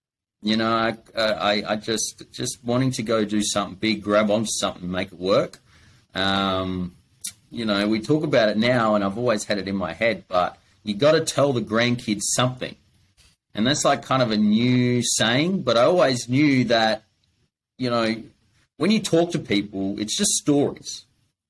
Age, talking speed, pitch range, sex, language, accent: 30-49, 185 wpm, 105-130 Hz, male, English, Australian